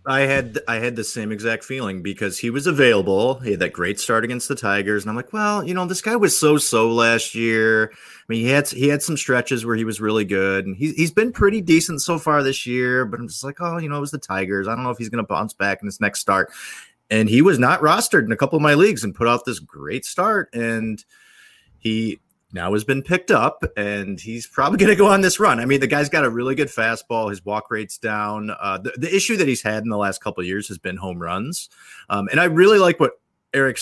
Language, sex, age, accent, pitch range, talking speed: English, male, 30-49, American, 105-140 Hz, 265 wpm